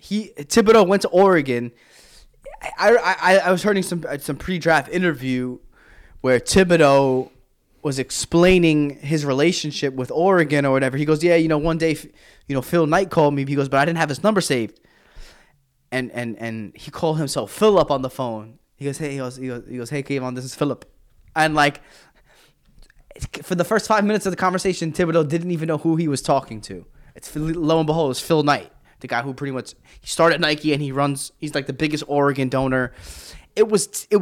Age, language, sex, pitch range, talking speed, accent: 20-39, English, male, 135-175 Hz, 200 wpm, American